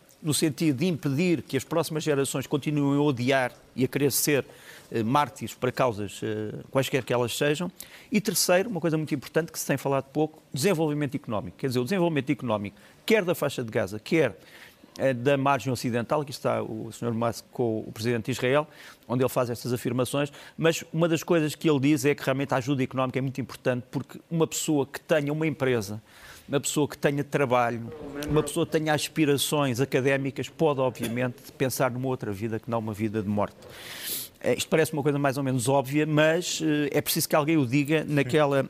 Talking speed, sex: 200 wpm, male